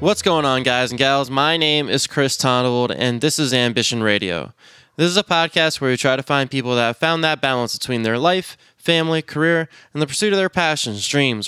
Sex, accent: male, American